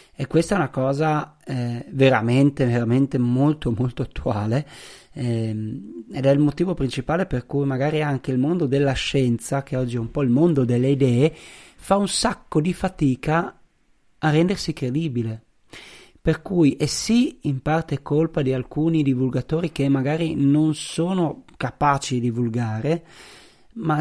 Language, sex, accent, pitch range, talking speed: Italian, male, native, 125-160 Hz, 150 wpm